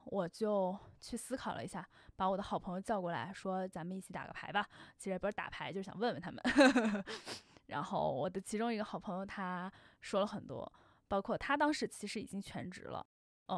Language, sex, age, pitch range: Chinese, female, 10-29, 195-270 Hz